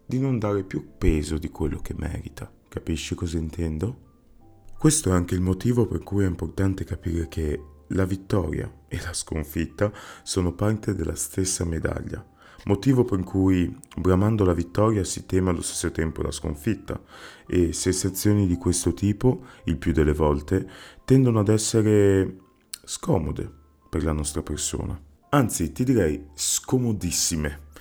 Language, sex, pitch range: Italian, male, 80-100 Hz